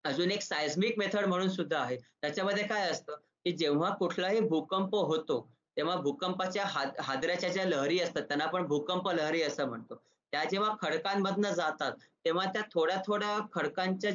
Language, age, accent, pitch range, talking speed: Marathi, 20-39, native, 155-190 Hz, 155 wpm